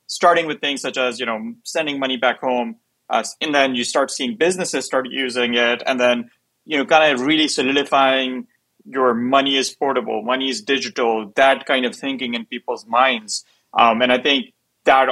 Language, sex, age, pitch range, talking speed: English, male, 30-49, 120-140 Hz, 190 wpm